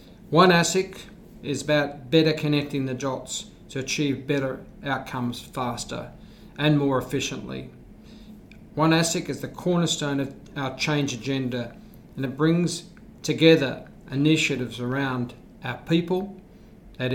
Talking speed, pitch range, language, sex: 120 wpm, 130-160 Hz, English, male